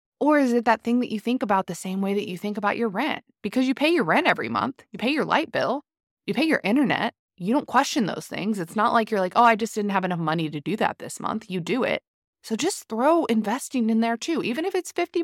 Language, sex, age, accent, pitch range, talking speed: English, female, 20-39, American, 165-245 Hz, 275 wpm